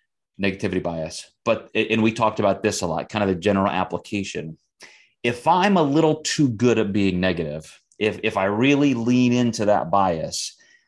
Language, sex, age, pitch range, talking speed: English, male, 30-49, 95-120 Hz, 175 wpm